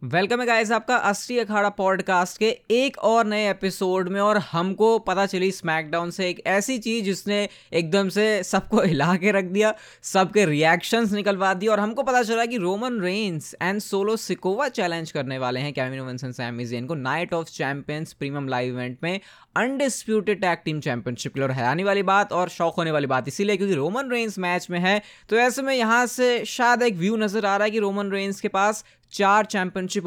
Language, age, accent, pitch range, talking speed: Hindi, 20-39, native, 155-205 Hz, 195 wpm